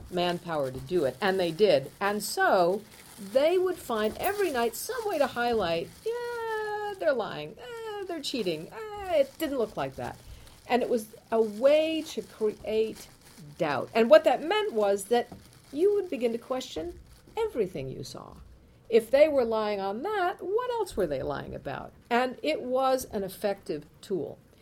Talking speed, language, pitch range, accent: 170 wpm, English, 175-275 Hz, American